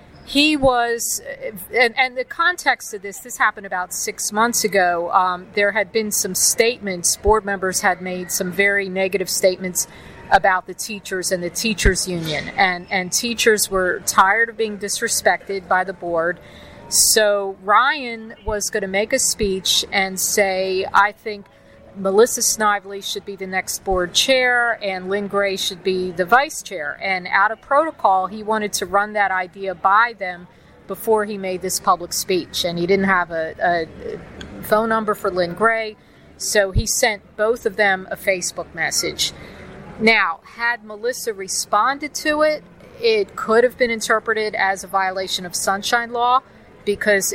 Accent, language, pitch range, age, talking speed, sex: American, English, 185-225 Hz, 40-59, 165 wpm, female